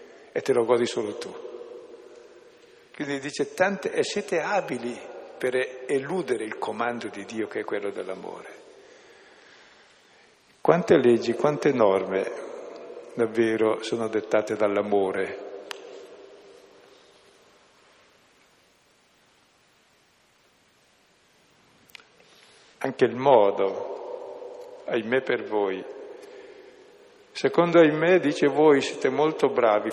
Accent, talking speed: native, 85 wpm